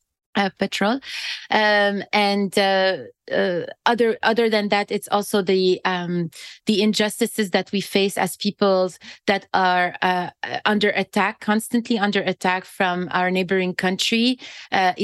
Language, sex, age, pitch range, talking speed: English, female, 30-49, 185-220 Hz, 135 wpm